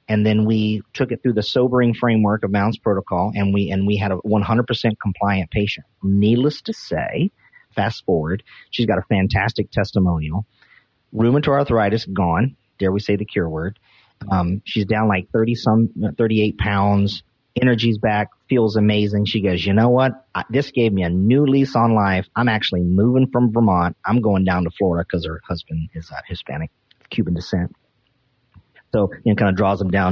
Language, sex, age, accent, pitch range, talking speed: English, male, 40-59, American, 100-130 Hz, 175 wpm